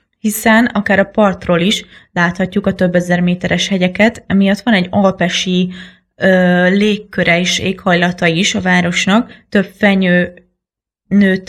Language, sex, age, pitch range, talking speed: Hungarian, female, 20-39, 180-195 Hz, 130 wpm